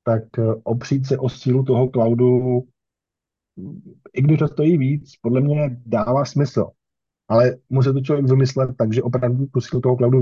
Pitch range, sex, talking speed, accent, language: 110-130 Hz, male, 165 wpm, native, Czech